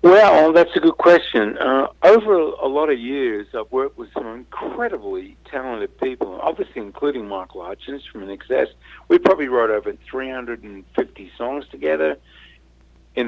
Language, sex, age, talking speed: English, male, 50-69, 145 wpm